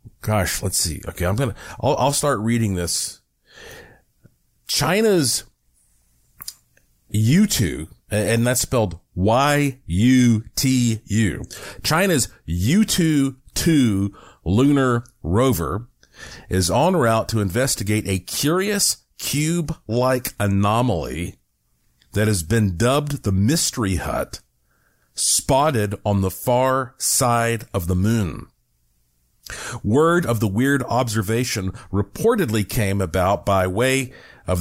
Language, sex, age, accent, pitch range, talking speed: English, male, 40-59, American, 95-130 Hz, 110 wpm